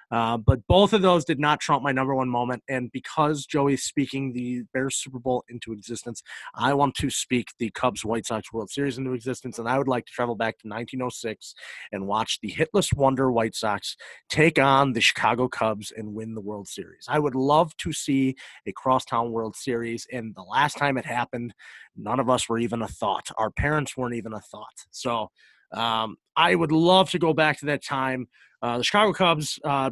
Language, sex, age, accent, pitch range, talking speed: English, male, 30-49, American, 115-145 Hz, 205 wpm